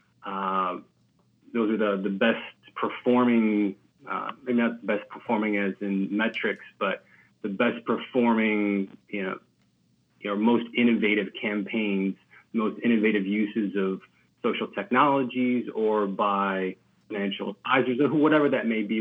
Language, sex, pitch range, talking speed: English, male, 105-130 Hz, 135 wpm